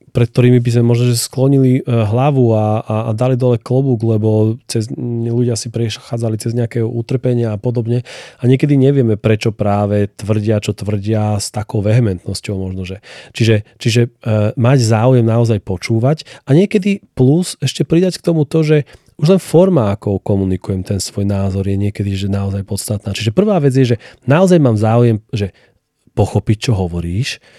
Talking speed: 170 wpm